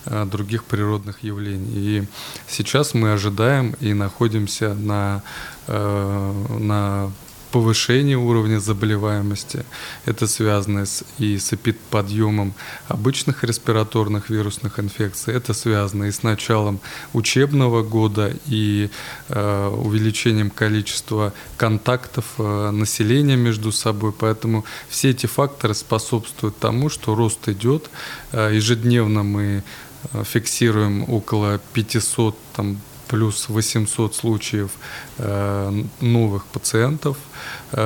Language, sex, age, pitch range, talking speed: Russian, male, 20-39, 105-120 Hz, 100 wpm